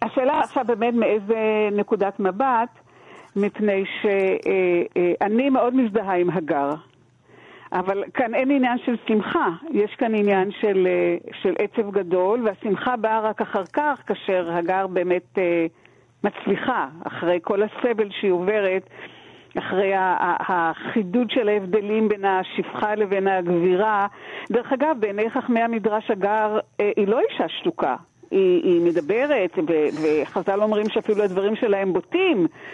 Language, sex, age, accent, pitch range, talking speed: Hebrew, female, 50-69, native, 185-235 Hz, 120 wpm